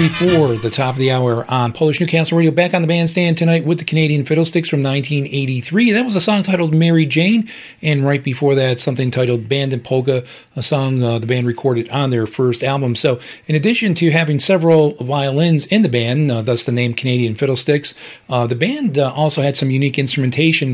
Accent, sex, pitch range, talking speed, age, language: American, male, 125-160 Hz, 210 wpm, 40-59, English